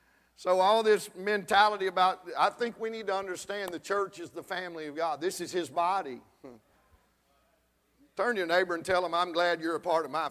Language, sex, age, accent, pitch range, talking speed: English, male, 50-69, American, 160-190 Hz, 210 wpm